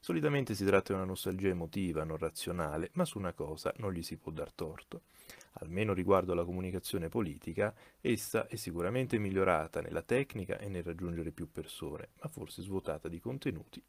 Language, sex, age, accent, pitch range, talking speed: Italian, male, 30-49, native, 85-130 Hz, 175 wpm